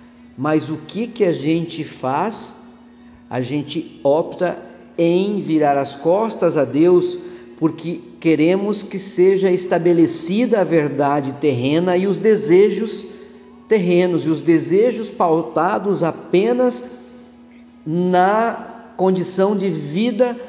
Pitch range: 155-205 Hz